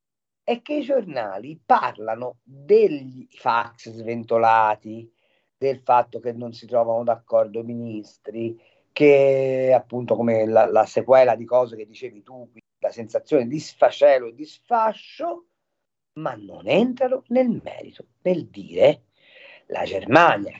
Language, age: Italian, 50-69